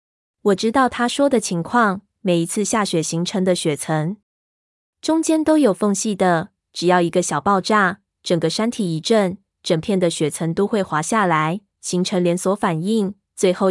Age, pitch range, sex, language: 20-39, 175-210 Hz, female, Chinese